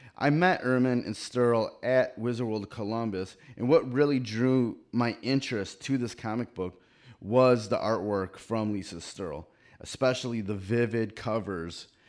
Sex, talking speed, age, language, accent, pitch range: male, 145 wpm, 30-49, English, American, 105-125 Hz